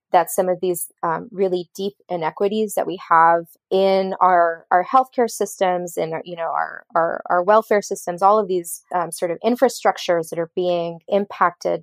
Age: 20-39